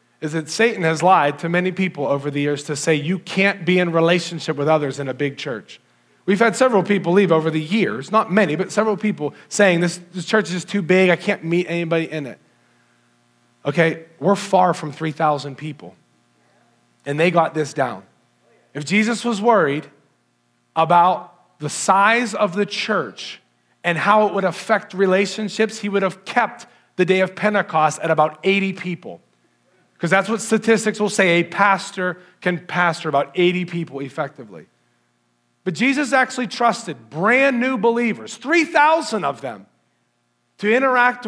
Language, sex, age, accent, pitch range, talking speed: English, male, 40-59, American, 155-210 Hz, 165 wpm